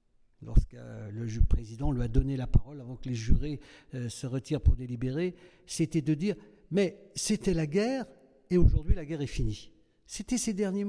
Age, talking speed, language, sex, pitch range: 60-79, 175 wpm, French, male, 140-185 Hz